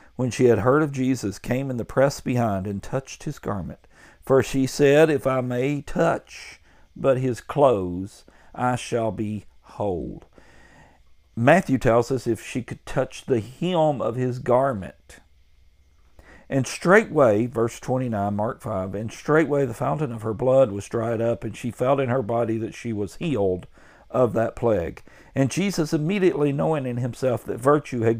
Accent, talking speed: American, 170 wpm